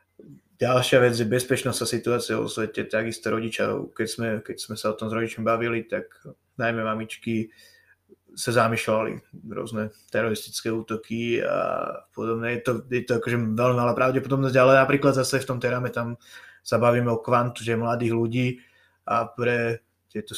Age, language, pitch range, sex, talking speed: 20-39, Slovak, 110-120 Hz, male, 160 wpm